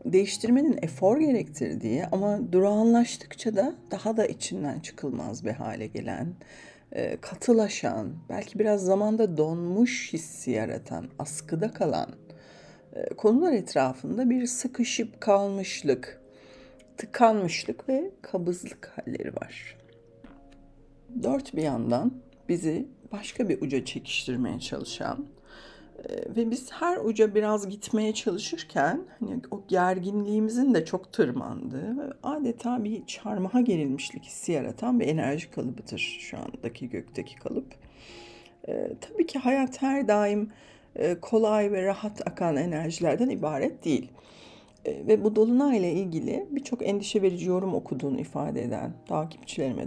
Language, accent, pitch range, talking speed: Turkish, native, 195-255 Hz, 110 wpm